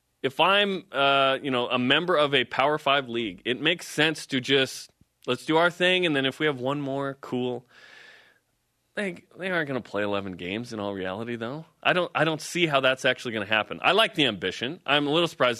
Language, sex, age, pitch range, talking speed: English, male, 30-49, 115-150 Hz, 230 wpm